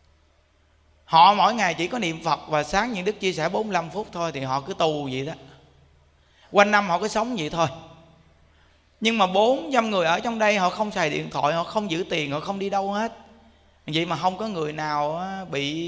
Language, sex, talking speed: Vietnamese, male, 215 wpm